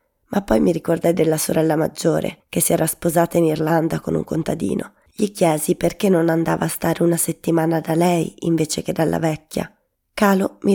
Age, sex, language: 20-39, female, Italian